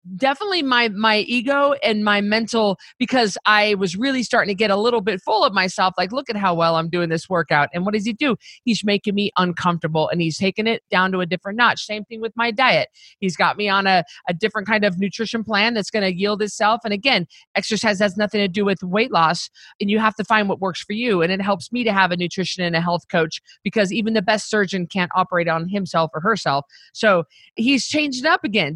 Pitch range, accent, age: 185-230 Hz, American, 40-59